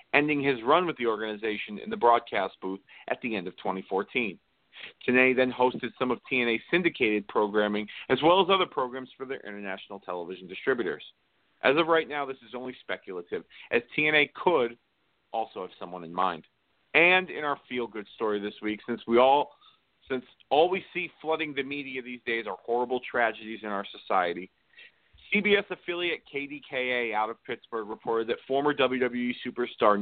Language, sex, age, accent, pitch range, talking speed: English, male, 40-59, American, 115-150 Hz, 170 wpm